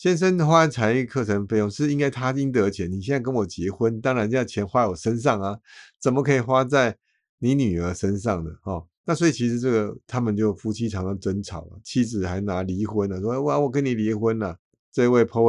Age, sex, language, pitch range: 50-69, male, Chinese, 95-130 Hz